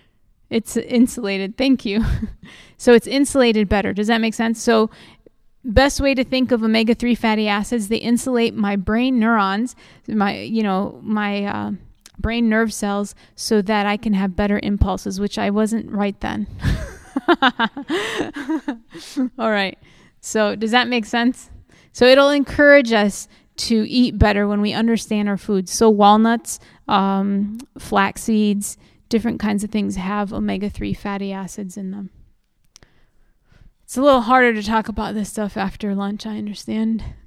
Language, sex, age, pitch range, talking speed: English, female, 20-39, 200-235 Hz, 150 wpm